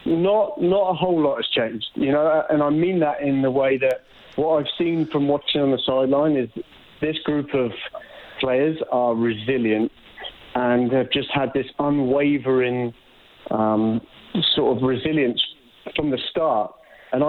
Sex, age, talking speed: male, 30-49, 160 wpm